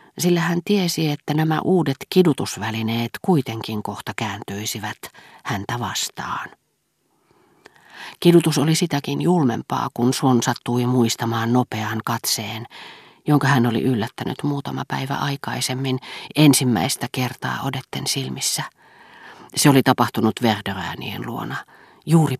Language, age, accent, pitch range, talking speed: Finnish, 40-59, native, 120-150 Hz, 105 wpm